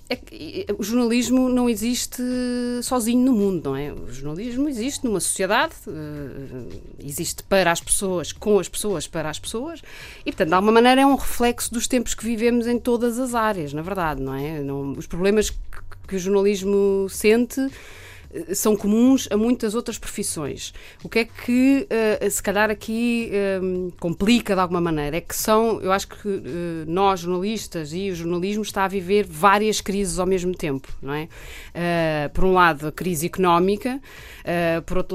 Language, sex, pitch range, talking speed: Portuguese, female, 170-225 Hz, 165 wpm